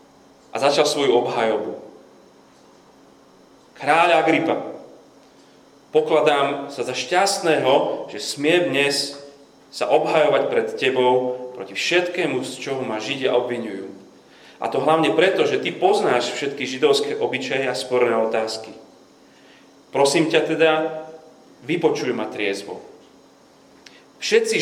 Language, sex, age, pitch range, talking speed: Slovak, male, 30-49, 120-155 Hz, 105 wpm